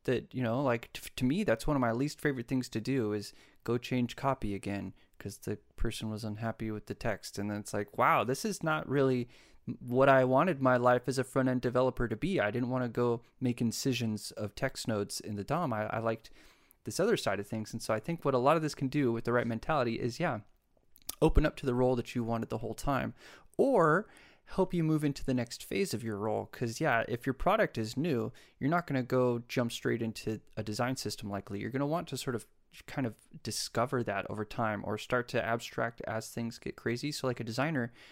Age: 20-39